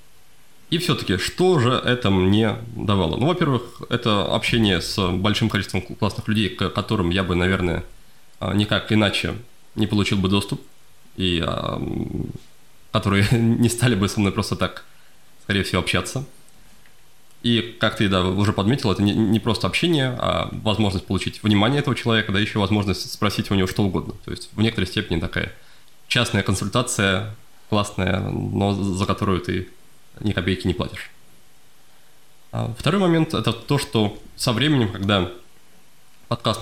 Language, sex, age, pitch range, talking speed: Russian, male, 20-39, 95-120 Hz, 145 wpm